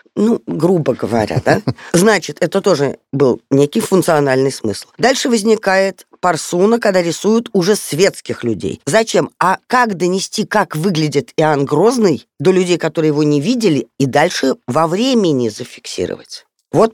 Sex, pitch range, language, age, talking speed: female, 140-210 Hz, Russian, 20-39, 140 wpm